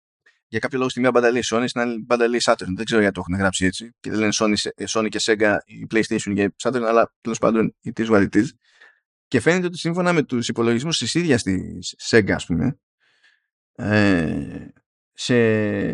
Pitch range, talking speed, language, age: 110-140 Hz, 185 wpm, Greek, 20-39